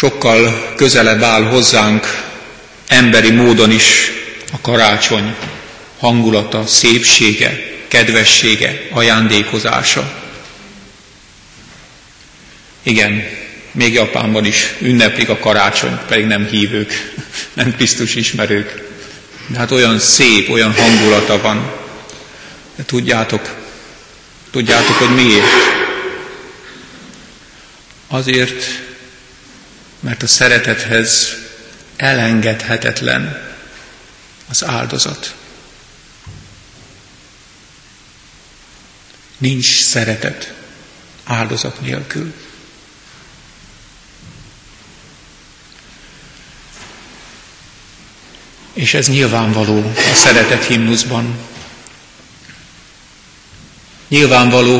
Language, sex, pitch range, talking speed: Hungarian, male, 110-125 Hz, 60 wpm